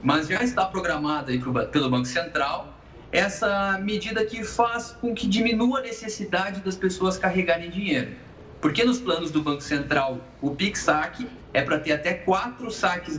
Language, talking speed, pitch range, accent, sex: Portuguese, 160 wpm, 155-205 Hz, Brazilian, male